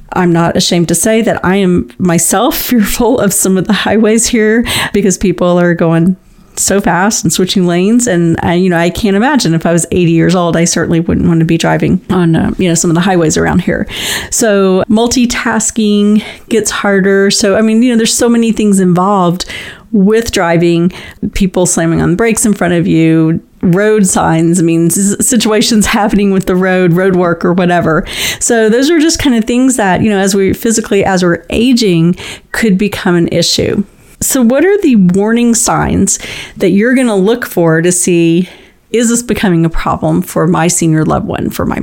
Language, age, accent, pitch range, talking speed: English, 40-59, American, 175-220 Hz, 200 wpm